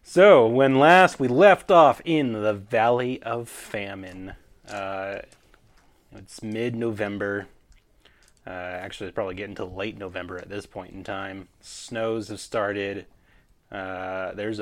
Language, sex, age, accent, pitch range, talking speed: English, male, 30-49, American, 95-115 Hz, 130 wpm